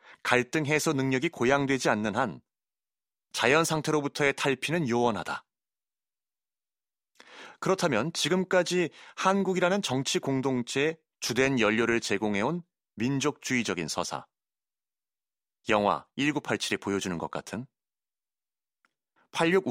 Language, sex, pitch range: Korean, male, 110-150 Hz